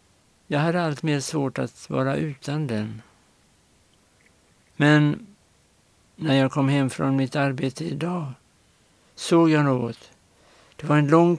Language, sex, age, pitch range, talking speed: Swedish, male, 60-79, 125-150 Hz, 130 wpm